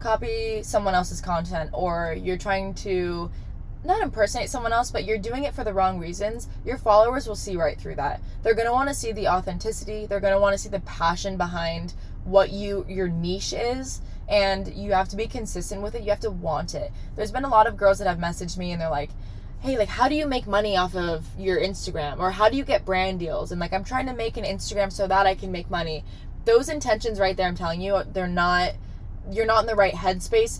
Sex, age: female, 20-39